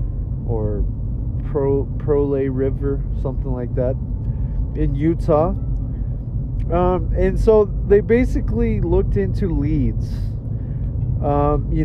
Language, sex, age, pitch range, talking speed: English, male, 30-49, 115-145 Hz, 95 wpm